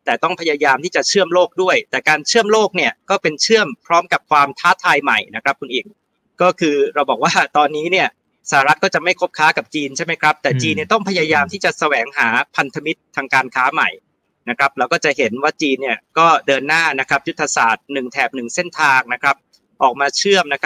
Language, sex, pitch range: Thai, male, 135-185 Hz